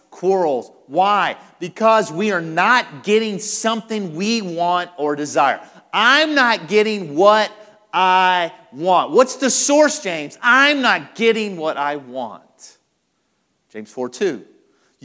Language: English